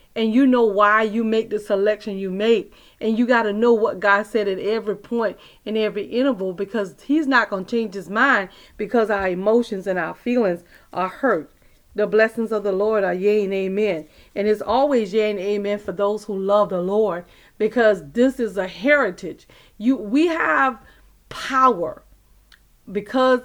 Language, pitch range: English, 205-255 Hz